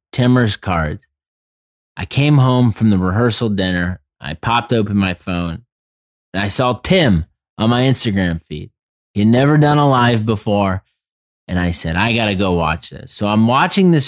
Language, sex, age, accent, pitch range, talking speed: English, male, 20-39, American, 85-110 Hz, 175 wpm